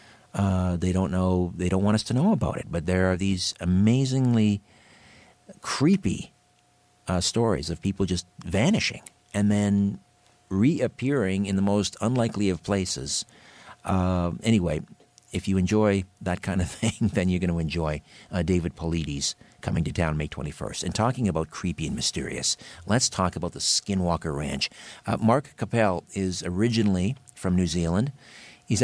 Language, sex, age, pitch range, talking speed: English, male, 50-69, 90-115 Hz, 155 wpm